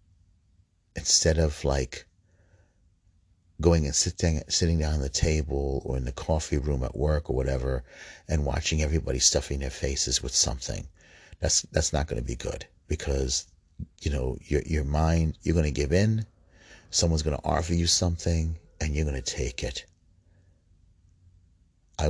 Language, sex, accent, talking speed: English, male, American, 160 wpm